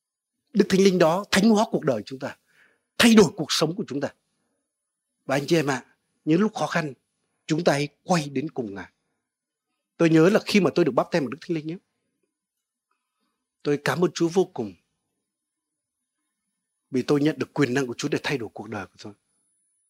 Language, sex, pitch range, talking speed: Vietnamese, male, 140-190 Hz, 210 wpm